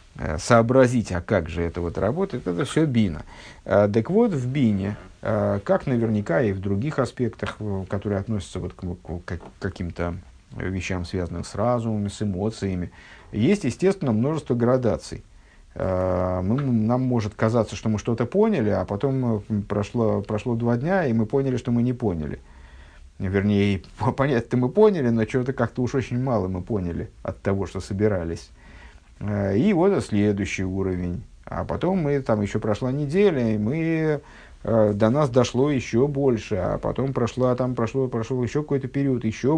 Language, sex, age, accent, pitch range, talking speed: Russian, male, 50-69, native, 100-125 Hz, 150 wpm